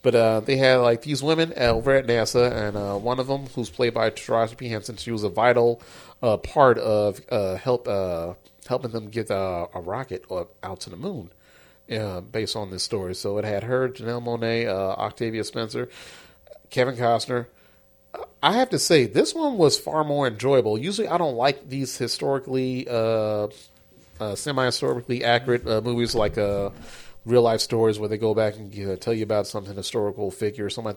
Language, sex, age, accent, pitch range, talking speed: English, male, 30-49, American, 105-125 Hz, 190 wpm